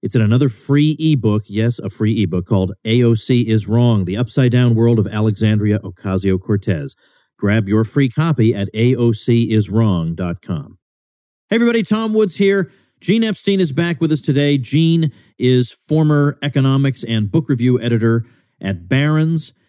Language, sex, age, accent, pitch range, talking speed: English, male, 40-59, American, 105-140 Hz, 150 wpm